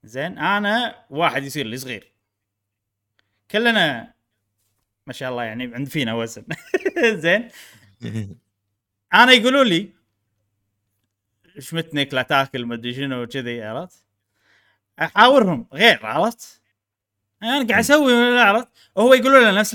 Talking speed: 110 wpm